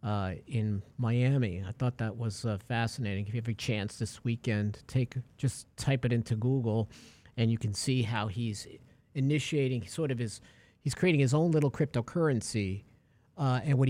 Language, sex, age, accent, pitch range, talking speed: English, male, 50-69, American, 115-140 Hz, 175 wpm